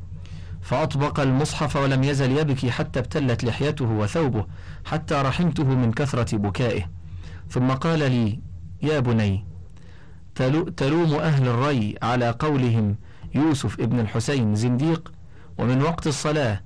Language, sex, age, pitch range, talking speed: Arabic, male, 40-59, 105-145 Hz, 115 wpm